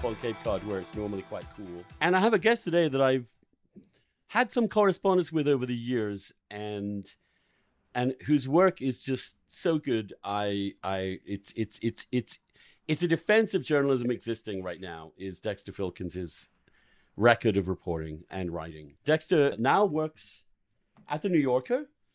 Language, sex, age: English, male, 50-69